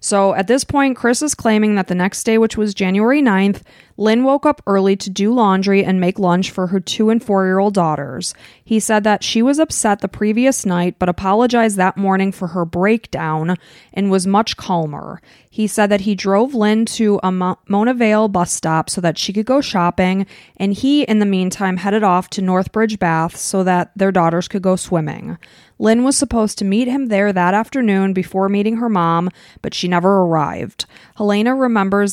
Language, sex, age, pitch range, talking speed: English, female, 20-39, 185-220 Hz, 195 wpm